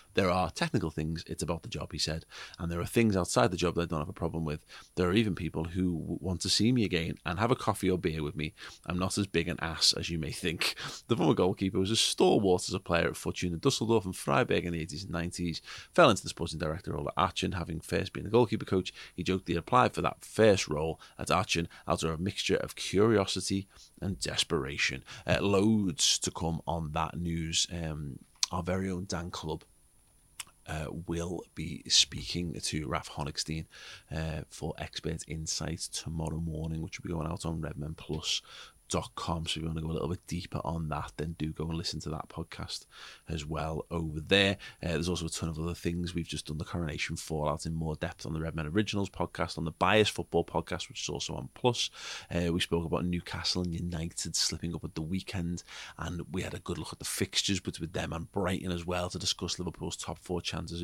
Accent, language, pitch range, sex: British, English, 80-90 Hz, male